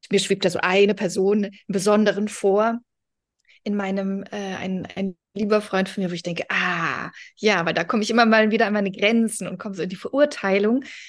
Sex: female